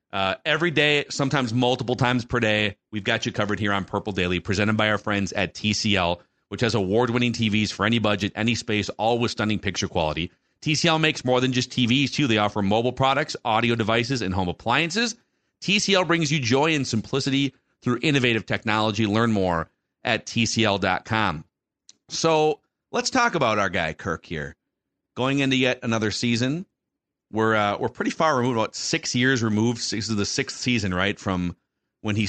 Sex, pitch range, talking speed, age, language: male, 100-125 Hz, 180 wpm, 40-59, English